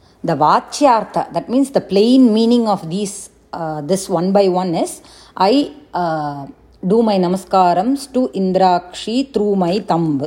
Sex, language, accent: female, English, Indian